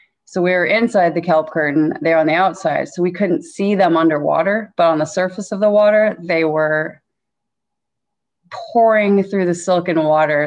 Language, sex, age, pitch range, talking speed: English, female, 20-39, 165-205 Hz, 180 wpm